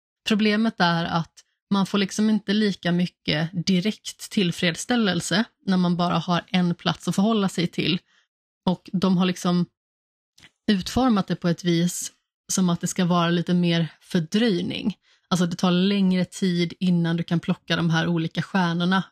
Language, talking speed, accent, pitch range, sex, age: Swedish, 160 wpm, native, 170-190 Hz, female, 30-49